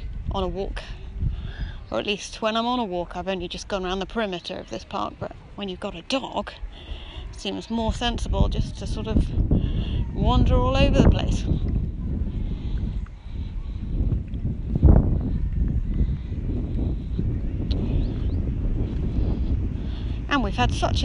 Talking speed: 125 wpm